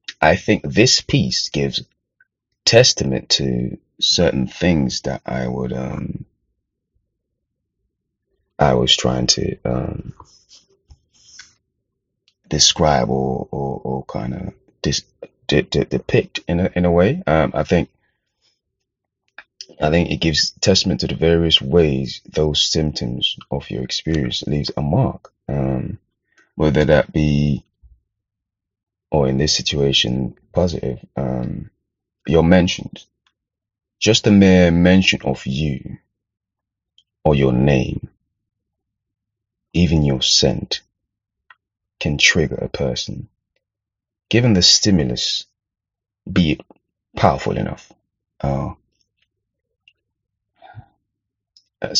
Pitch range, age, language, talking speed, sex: 70-105 Hz, 30-49, English, 105 wpm, male